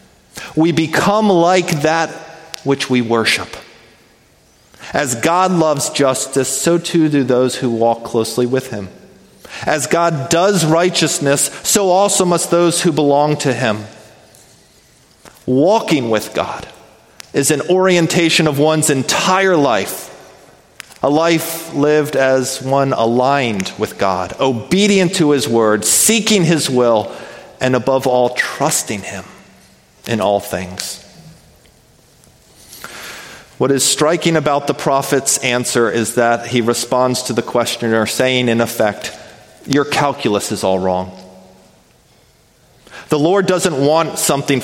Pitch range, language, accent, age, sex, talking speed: 125-170 Hz, English, American, 40-59, male, 125 wpm